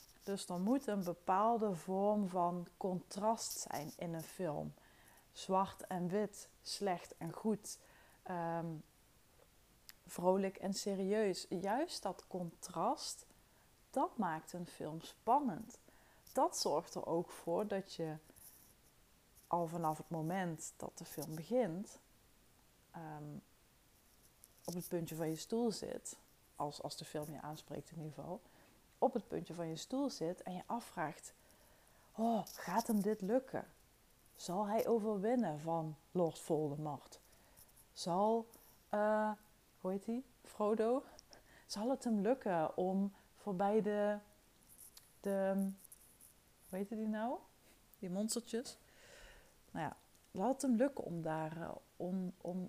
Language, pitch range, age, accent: Dutch, 165-215 Hz, 30-49, Dutch